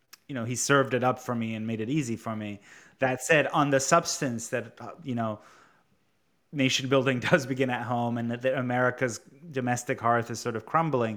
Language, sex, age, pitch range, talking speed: English, male, 20-39, 115-140 Hz, 210 wpm